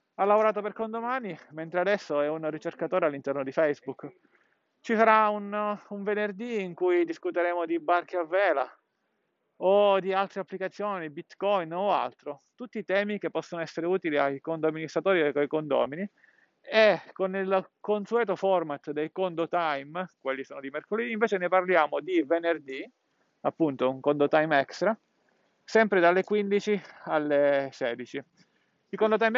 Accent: native